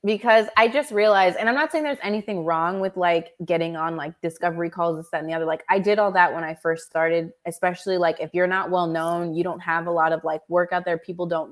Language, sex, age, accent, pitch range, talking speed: English, female, 20-39, American, 160-185 Hz, 265 wpm